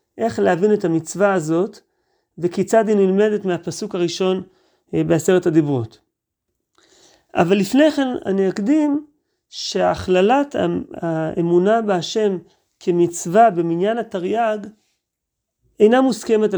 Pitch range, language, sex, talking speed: 175-225 Hz, Hebrew, male, 90 wpm